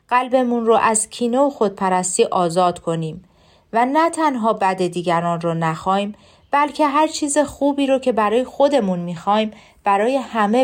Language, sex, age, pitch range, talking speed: Persian, female, 40-59, 185-270 Hz, 145 wpm